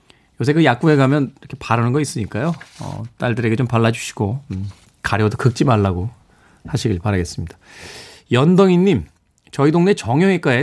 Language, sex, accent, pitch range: Korean, male, native, 110-150 Hz